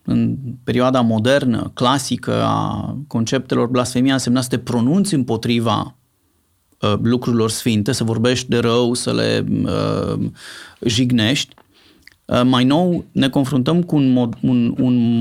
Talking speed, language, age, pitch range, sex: 130 wpm, Romanian, 30-49, 120-140 Hz, male